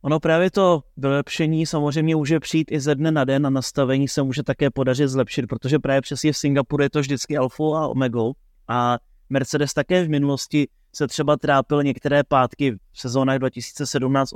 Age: 30-49